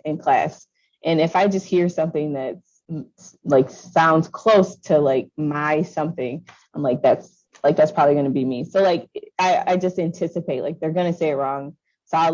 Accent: American